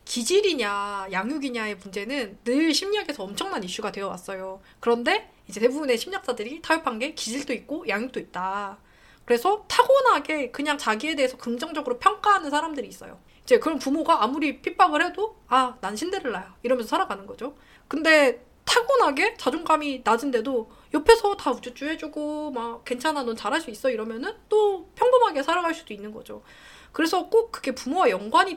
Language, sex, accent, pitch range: Korean, female, native, 215-325 Hz